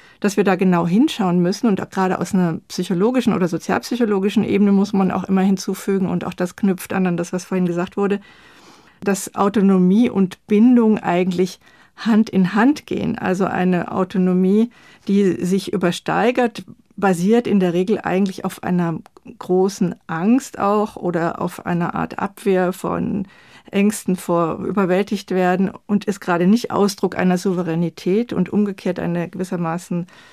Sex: female